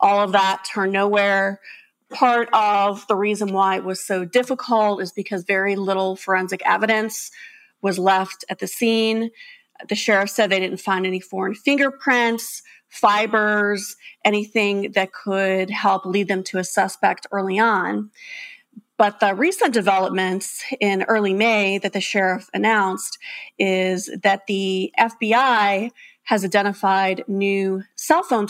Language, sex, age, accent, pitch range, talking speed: English, female, 30-49, American, 195-230 Hz, 140 wpm